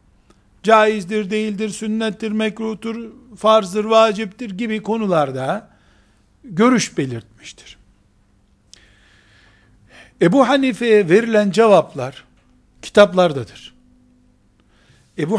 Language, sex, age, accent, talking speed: Turkish, male, 60-79, native, 60 wpm